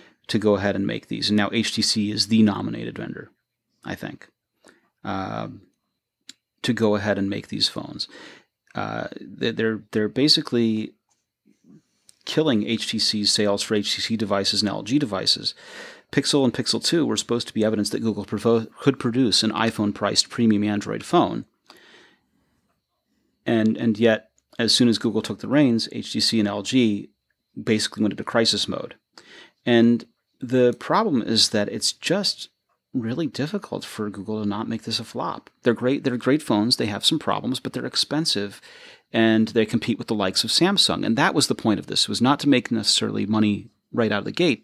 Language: English